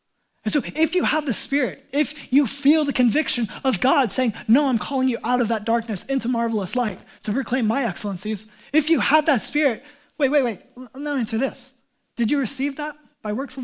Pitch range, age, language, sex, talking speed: 200-255 Hz, 20-39, English, male, 210 wpm